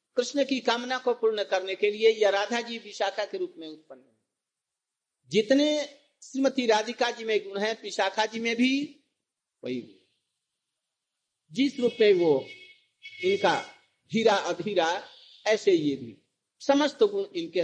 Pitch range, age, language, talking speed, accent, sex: 185-245 Hz, 50-69, Hindi, 135 wpm, native, male